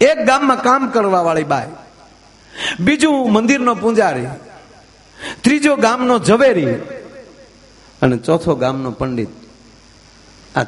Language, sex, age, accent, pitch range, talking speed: Gujarati, male, 50-69, native, 175-265 Hz, 95 wpm